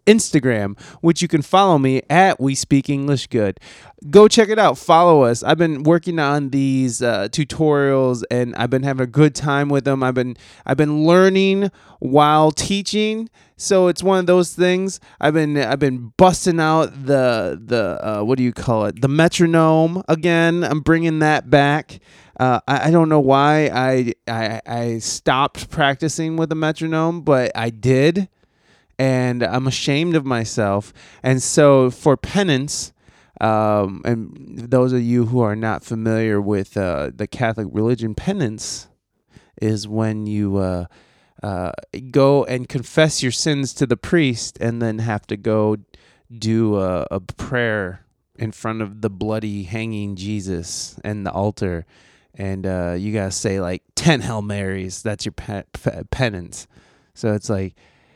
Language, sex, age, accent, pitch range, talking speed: English, male, 20-39, American, 110-155 Hz, 160 wpm